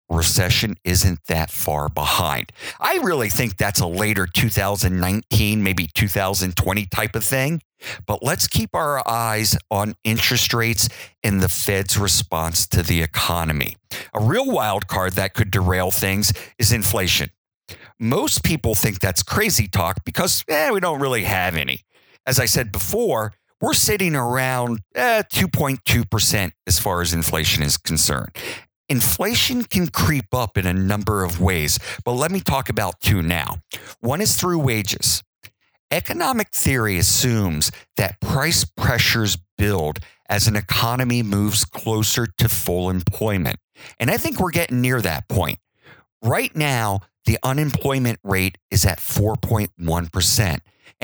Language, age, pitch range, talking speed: English, 50-69, 95-120 Hz, 140 wpm